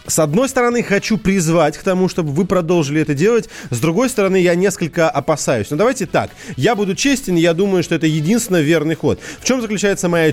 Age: 30-49